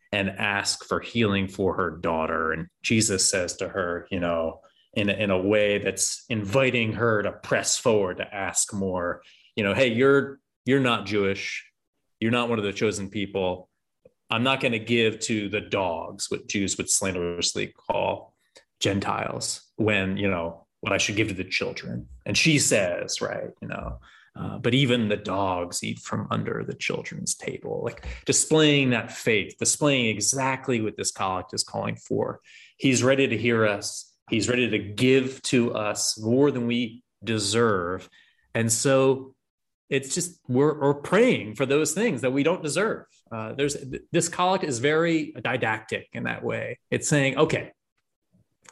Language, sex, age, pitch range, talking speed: English, male, 30-49, 100-135 Hz, 170 wpm